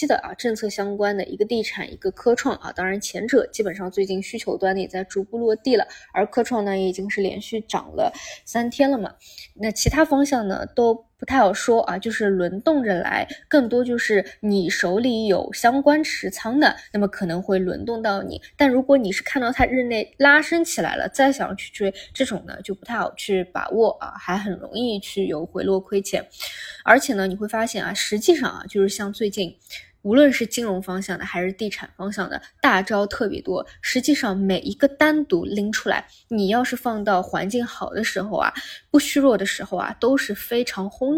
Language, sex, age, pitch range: Chinese, female, 20-39, 195-260 Hz